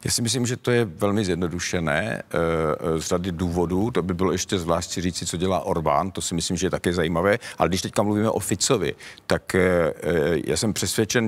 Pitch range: 95-110 Hz